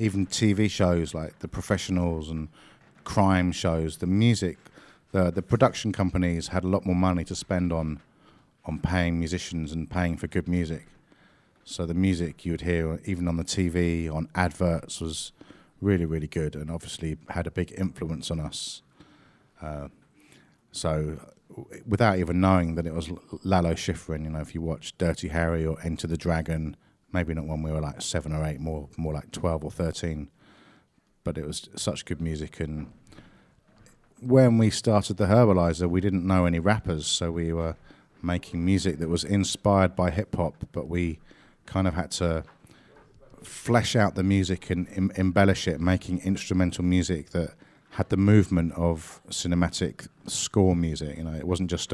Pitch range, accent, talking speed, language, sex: 80-95 Hz, British, 175 wpm, French, male